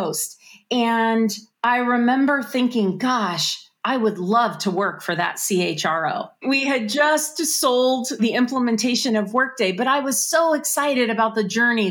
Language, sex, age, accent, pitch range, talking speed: English, female, 30-49, American, 175-220 Hz, 145 wpm